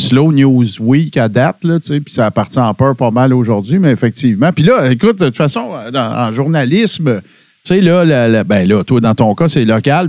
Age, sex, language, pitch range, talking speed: 50-69, male, French, 125-170 Hz, 230 wpm